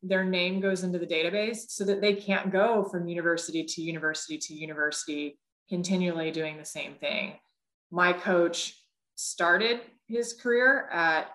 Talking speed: 150 wpm